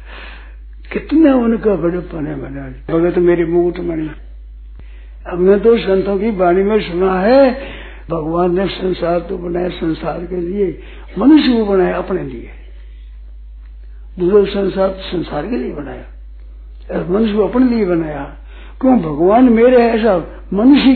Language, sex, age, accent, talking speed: Hindi, male, 60-79, native, 135 wpm